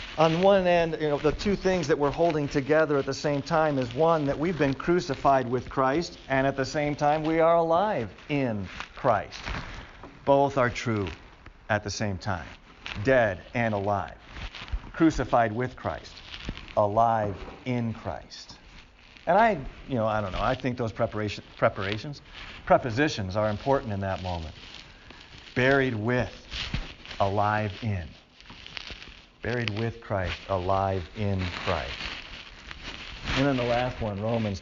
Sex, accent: male, American